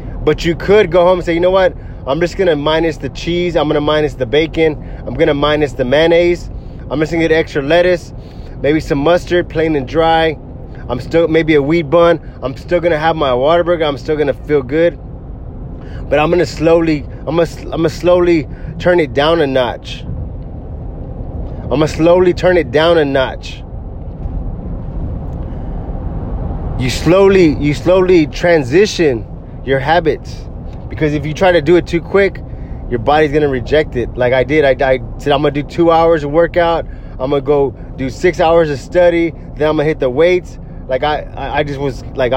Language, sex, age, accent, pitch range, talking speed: English, male, 20-39, American, 125-165 Hz, 195 wpm